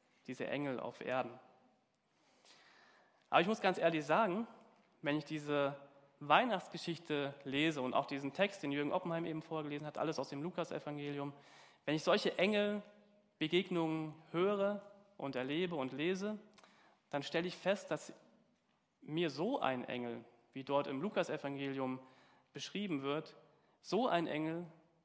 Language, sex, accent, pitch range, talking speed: German, male, German, 140-180 Hz, 135 wpm